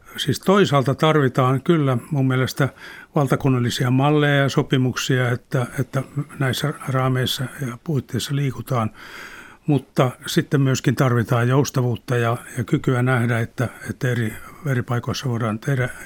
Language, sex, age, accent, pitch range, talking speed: Finnish, male, 60-79, native, 125-145 Hz, 125 wpm